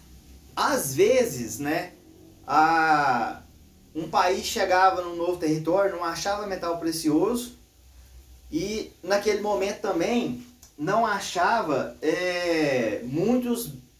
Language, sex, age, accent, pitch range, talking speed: Portuguese, male, 30-49, Brazilian, 145-205 Hz, 95 wpm